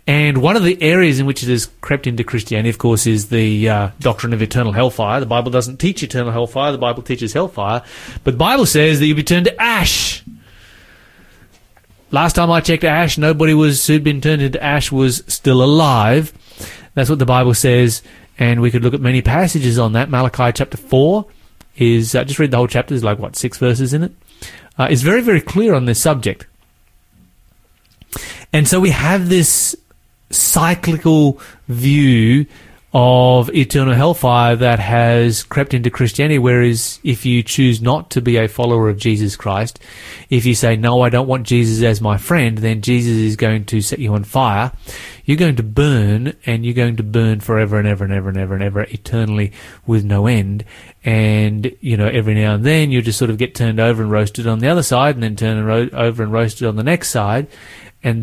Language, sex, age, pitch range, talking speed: English, male, 30-49, 115-145 Hz, 200 wpm